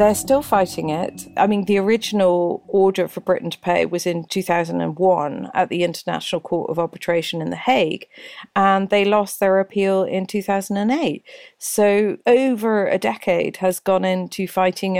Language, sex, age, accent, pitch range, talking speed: English, female, 40-59, British, 180-205 Hz, 160 wpm